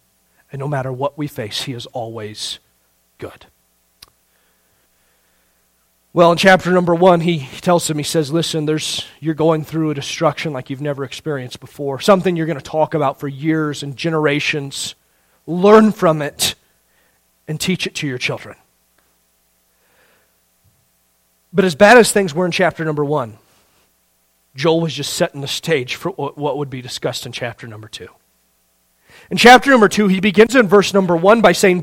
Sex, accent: male, American